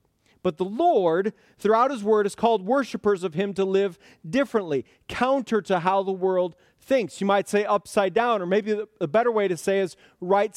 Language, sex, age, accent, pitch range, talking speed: English, male, 40-59, American, 185-230 Hz, 195 wpm